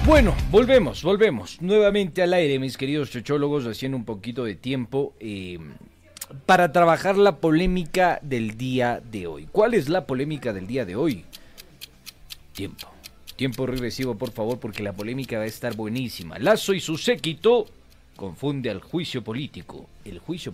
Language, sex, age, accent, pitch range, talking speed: Spanish, male, 40-59, Mexican, 100-145 Hz, 155 wpm